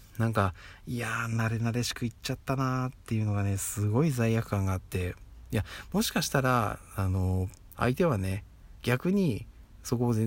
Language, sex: Japanese, male